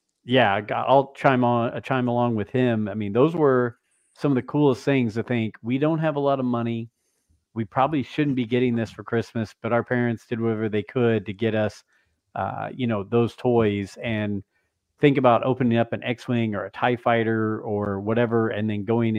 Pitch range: 105-130 Hz